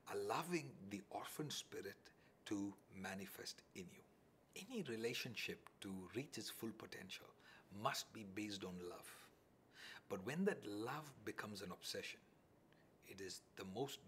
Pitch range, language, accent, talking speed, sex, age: 100-145 Hz, English, Indian, 130 wpm, male, 60-79